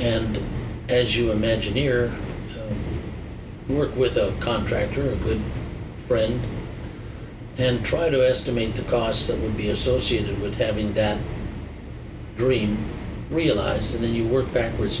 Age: 60-79